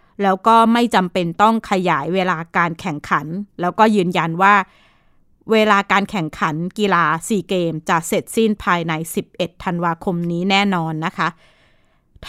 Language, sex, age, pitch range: Thai, female, 20-39, 175-215 Hz